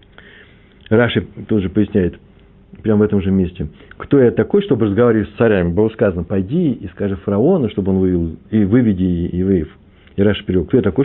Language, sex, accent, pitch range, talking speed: Russian, male, native, 100-135 Hz, 185 wpm